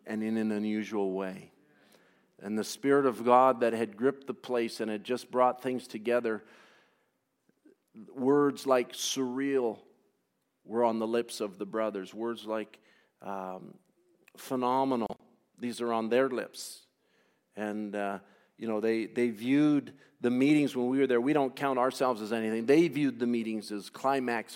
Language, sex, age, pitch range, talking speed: English, male, 50-69, 110-135 Hz, 160 wpm